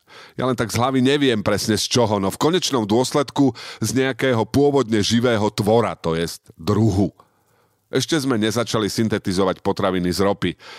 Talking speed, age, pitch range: 155 wpm, 40-59, 95-130 Hz